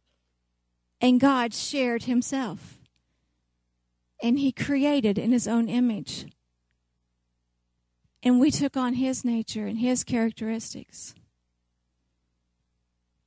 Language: English